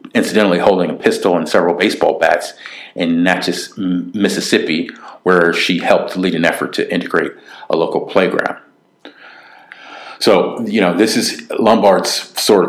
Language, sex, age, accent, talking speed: English, male, 50-69, American, 135 wpm